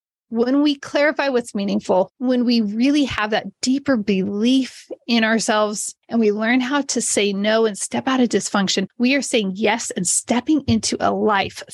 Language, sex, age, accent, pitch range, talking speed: English, female, 30-49, American, 215-265 Hz, 180 wpm